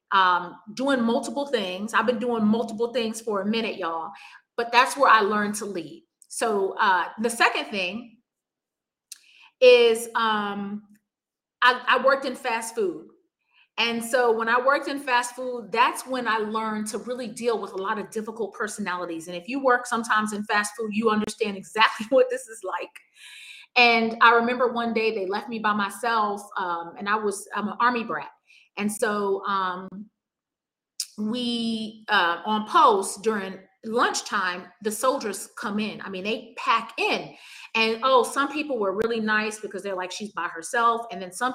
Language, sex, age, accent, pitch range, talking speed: English, female, 30-49, American, 205-245 Hz, 175 wpm